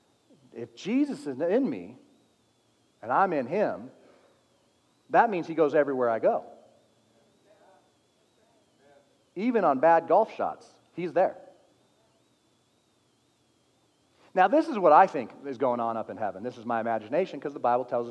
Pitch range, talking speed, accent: 130-190 Hz, 145 wpm, American